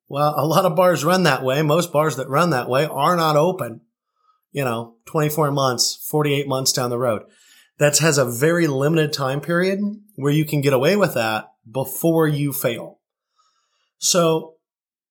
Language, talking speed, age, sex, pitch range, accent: English, 175 wpm, 30-49, male, 135-180 Hz, American